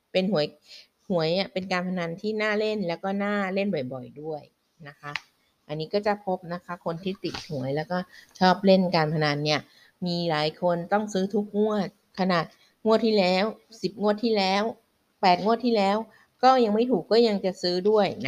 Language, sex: Thai, female